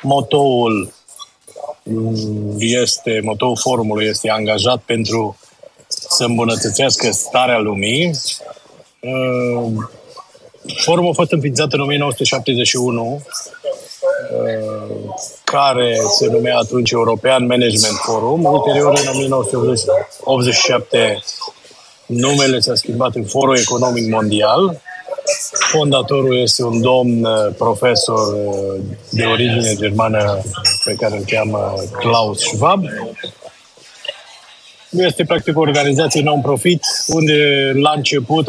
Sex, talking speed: male, 85 wpm